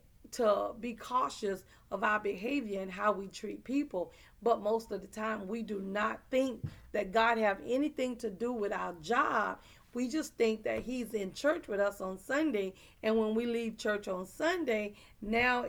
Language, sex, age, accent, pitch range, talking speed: English, female, 40-59, American, 195-230 Hz, 185 wpm